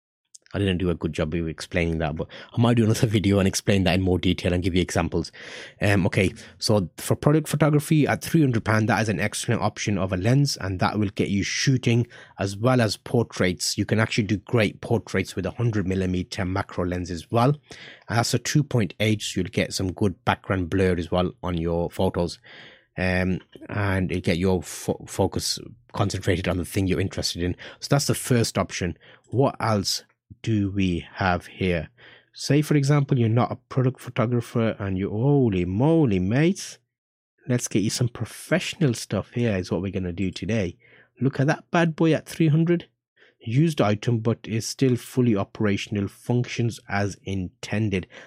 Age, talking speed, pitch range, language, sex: 30-49, 190 wpm, 95-125 Hz, English, male